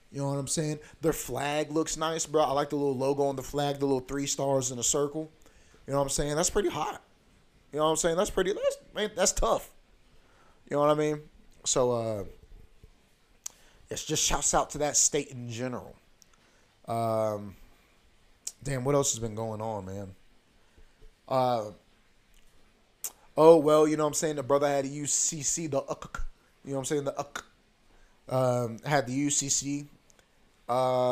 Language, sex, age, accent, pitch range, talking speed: English, male, 30-49, American, 125-150 Hz, 185 wpm